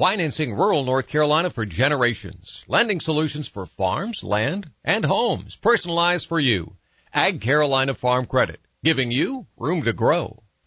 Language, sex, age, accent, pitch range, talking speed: English, male, 60-79, American, 120-175 Hz, 140 wpm